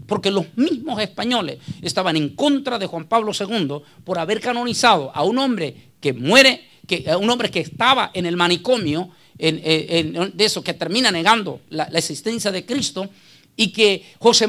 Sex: male